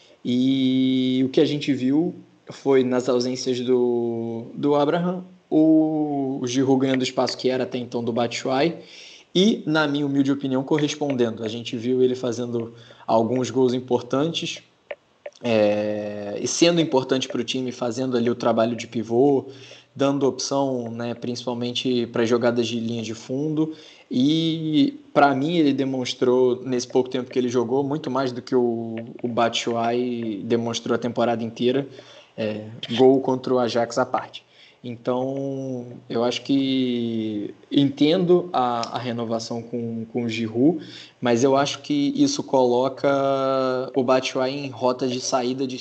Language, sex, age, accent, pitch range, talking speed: Portuguese, male, 20-39, Brazilian, 120-140 Hz, 150 wpm